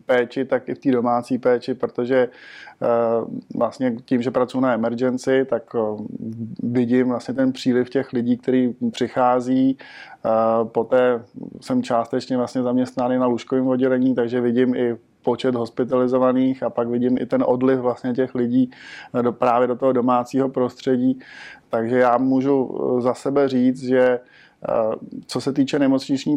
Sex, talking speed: male, 150 wpm